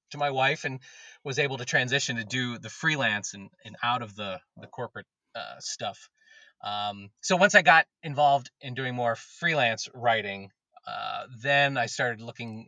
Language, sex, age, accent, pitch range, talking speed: English, male, 30-49, American, 115-150 Hz, 175 wpm